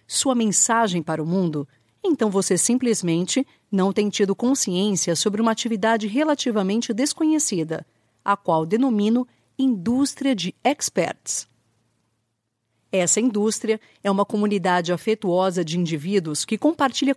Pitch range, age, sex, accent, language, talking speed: 170-245 Hz, 40-59, female, Brazilian, Portuguese, 115 wpm